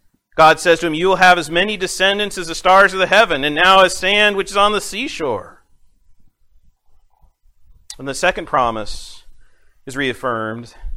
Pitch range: 115-190 Hz